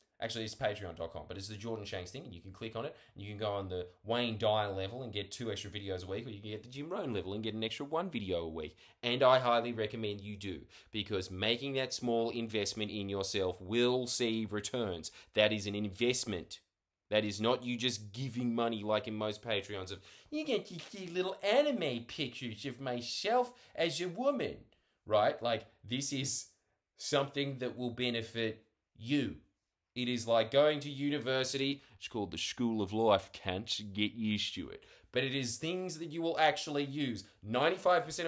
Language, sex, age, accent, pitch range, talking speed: English, male, 20-39, Australian, 105-155 Hz, 195 wpm